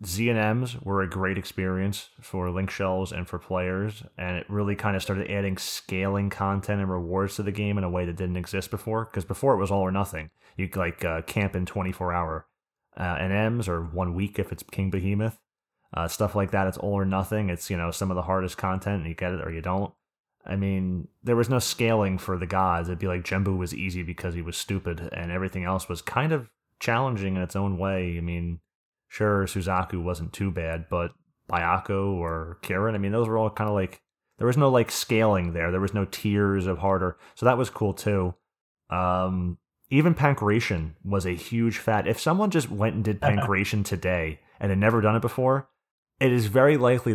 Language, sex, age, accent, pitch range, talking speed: English, male, 30-49, American, 90-105 Hz, 215 wpm